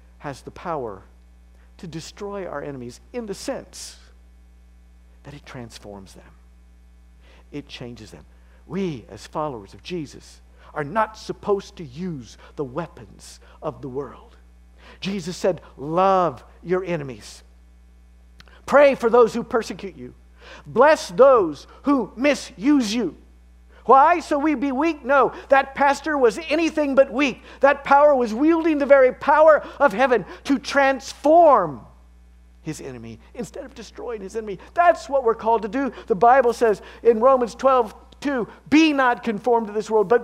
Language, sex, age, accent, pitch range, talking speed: English, male, 50-69, American, 175-290 Hz, 145 wpm